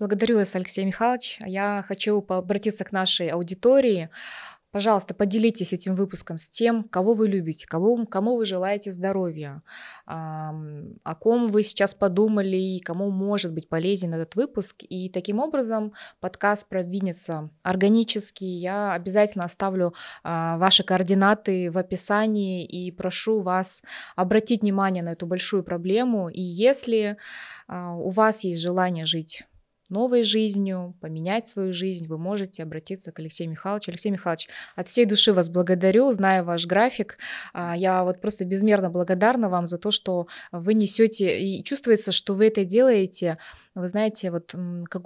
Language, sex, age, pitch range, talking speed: Russian, female, 20-39, 175-215 Hz, 140 wpm